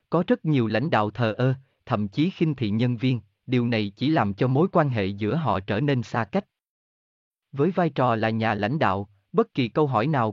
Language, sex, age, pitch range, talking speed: Vietnamese, male, 30-49, 110-155 Hz, 225 wpm